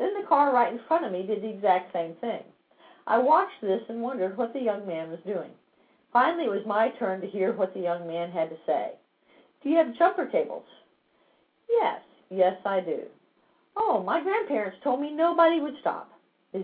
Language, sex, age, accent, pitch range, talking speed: English, female, 50-69, American, 195-290 Hz, 200 wpm